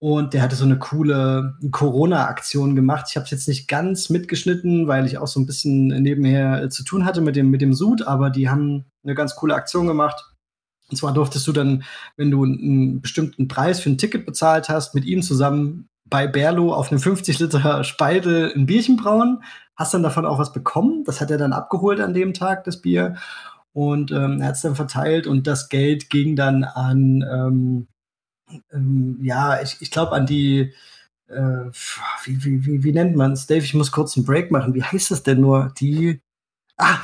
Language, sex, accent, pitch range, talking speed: German, male, German, 135-160 Hz, 200 wpm